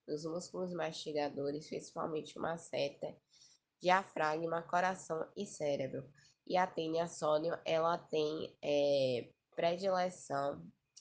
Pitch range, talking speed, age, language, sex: 145-170 Hz, 95 wpm, 10-29, Portuguese, female